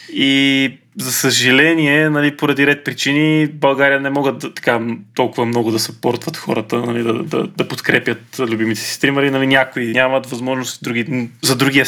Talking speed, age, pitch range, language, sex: 160 wpm, 20-39, 125-155 Hz, Bulgarian, male